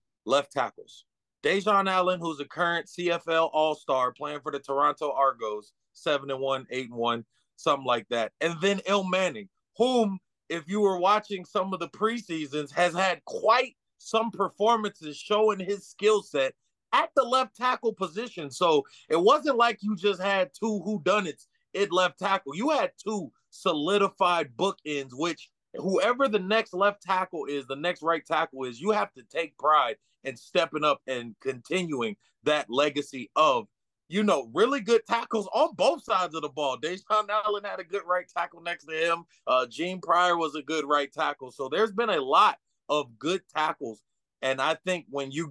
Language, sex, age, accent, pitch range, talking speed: English, male, 30-49, American, 145-195 Hz, 170 wpm